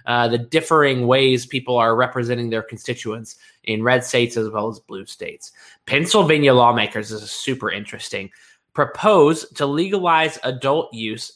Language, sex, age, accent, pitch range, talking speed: English, male, 20-39, American, 115-145 Hz, 150 wpm